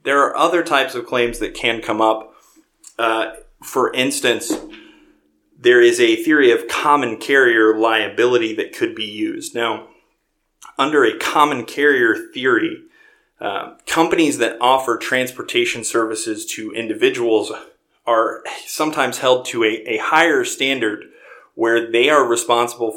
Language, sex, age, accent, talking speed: English, male, 30-49, American, 135 wpm